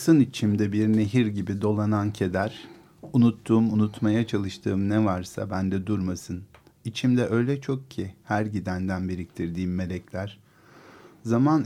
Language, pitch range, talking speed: Turkish, 95-120 Hz, 120 wpm